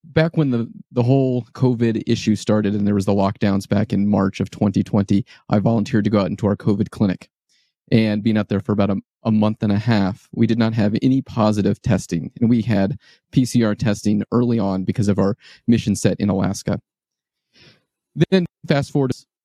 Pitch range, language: 105-130 Hz, English